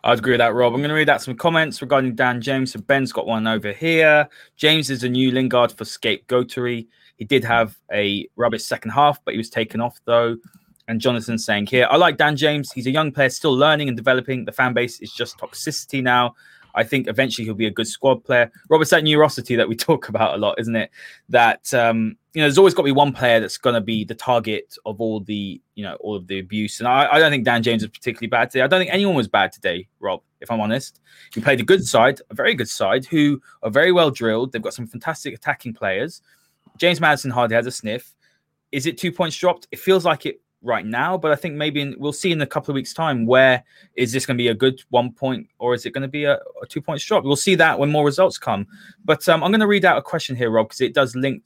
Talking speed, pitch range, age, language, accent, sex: 260 wpm, 115-150 Hz, 20-39, English, British, male